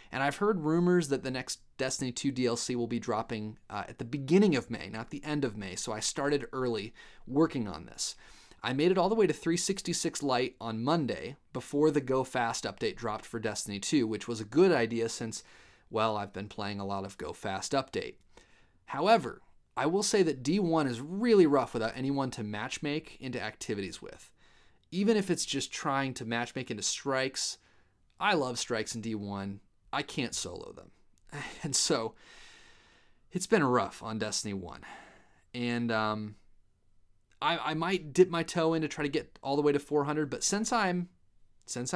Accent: American